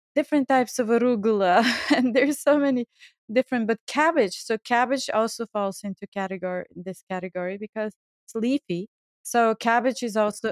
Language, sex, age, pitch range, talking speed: English, female, 30-49, 195-250 Hz, 150 wpm